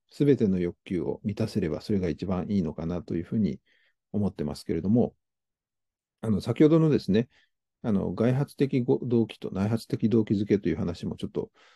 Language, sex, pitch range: Japanese, male, 105-135 Hz